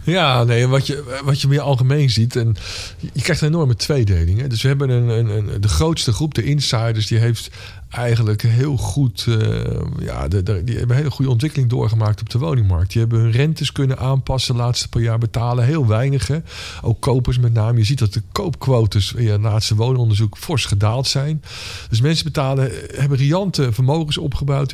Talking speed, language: 195 wpm, Dutch